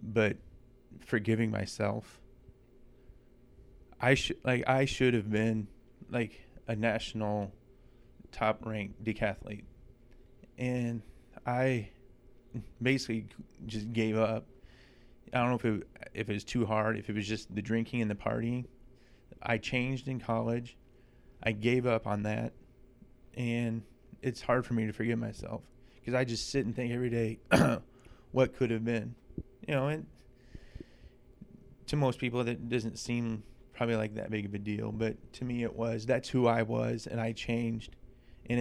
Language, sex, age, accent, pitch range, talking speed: English, male, 20-39, American, 110-125 Hz, 150 wpm